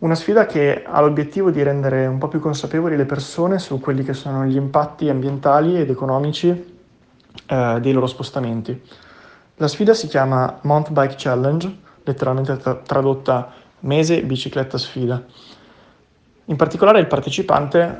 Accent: native